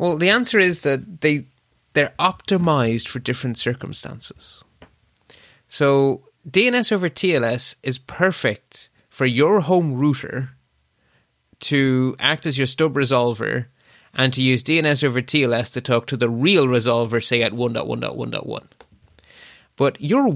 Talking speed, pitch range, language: 130 wpm, 125-165 Hz, English